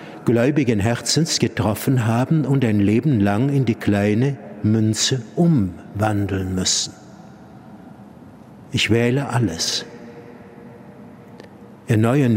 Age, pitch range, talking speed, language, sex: 60-79, 105-140 Hz, 85 wpm, German, male